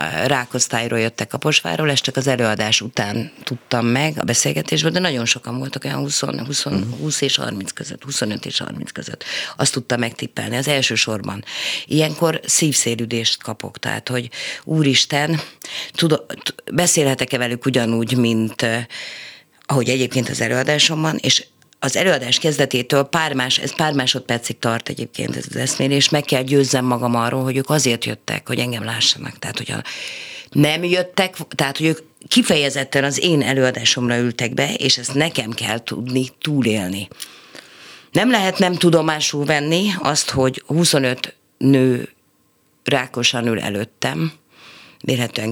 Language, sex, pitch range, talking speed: Hungarian, female, 120-150 Hz, 140 wpm